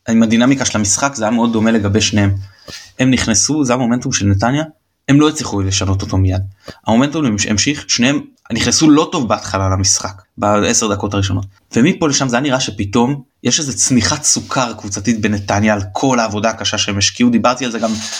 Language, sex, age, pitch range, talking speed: Hebrew, male, 20-39, 105-125 Hz, 185 wpm